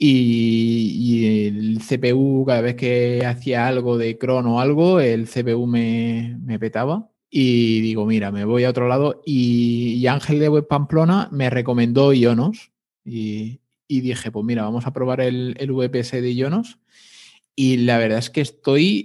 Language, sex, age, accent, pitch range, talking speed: Spanish, male, 20-39, Spanish, 115-135 Hz, 170 wpm